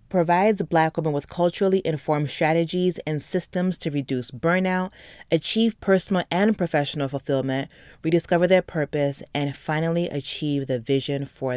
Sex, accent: female, American